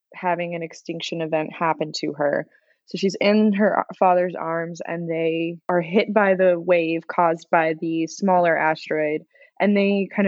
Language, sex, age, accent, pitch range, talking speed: English, female, 20-39, American, 165-195 Hz, 165 wpm